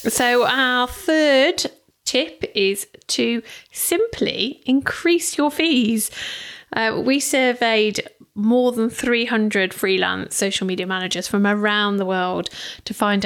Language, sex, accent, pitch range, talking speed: English, female, British, 190-230 Hz, 120 wpm